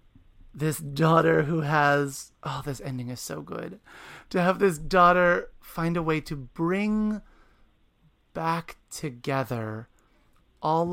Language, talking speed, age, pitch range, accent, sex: English, 120 wpm, 30-49, 125-155 Hz, American, male